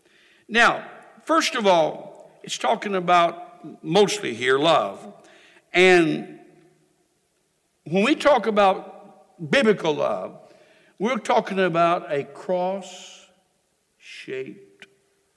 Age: 60-79